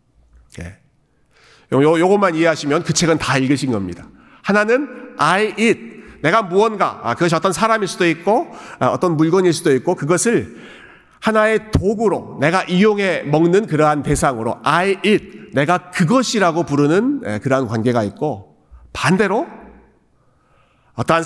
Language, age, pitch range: Korean, 40-59, 130-195 Hz